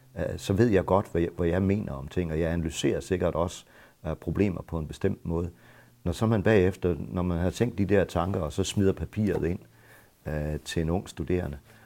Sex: male